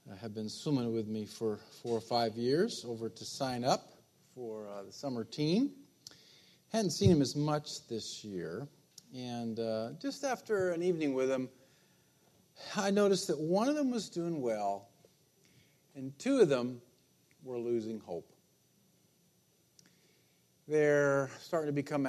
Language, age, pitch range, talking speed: English, 50-69, 115-150 Hz, 145 wpm